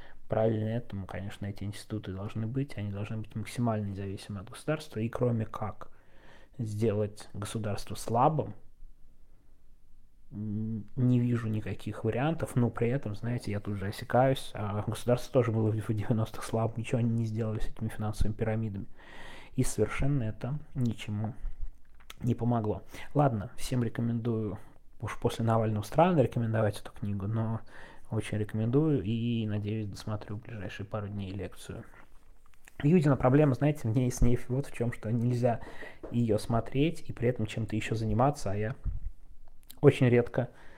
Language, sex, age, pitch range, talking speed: Russian, male, 20-39, 105-125 Hz, 145 wpm